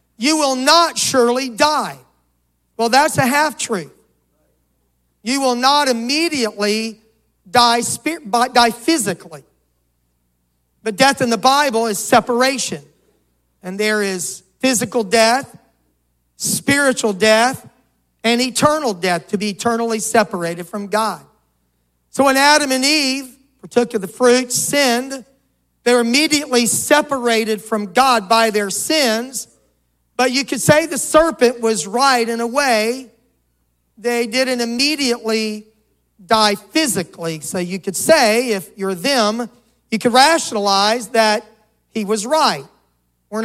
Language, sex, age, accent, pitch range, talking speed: English, male, 50-69, American, 195-260 Hz, 125 wpm